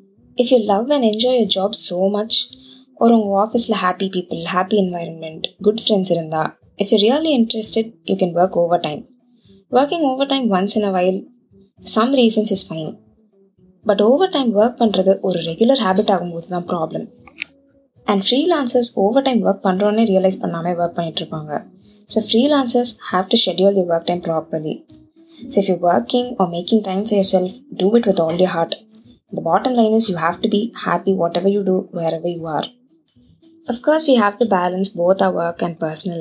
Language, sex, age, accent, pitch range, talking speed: Tamil, female, 20-39, native, 175-230 Hz, 180 wpm